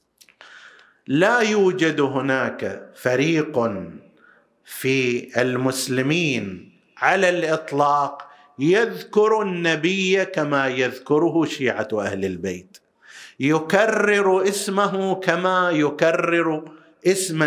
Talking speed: 70 wpm